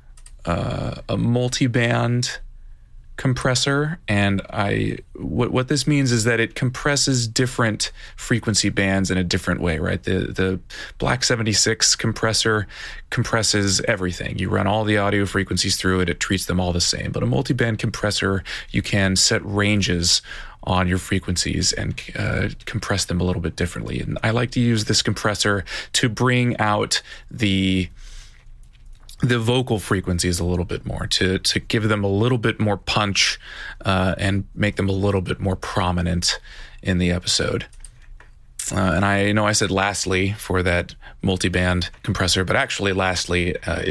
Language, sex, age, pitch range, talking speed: English, male, 30-49, 95-110 Hz, 160 wpm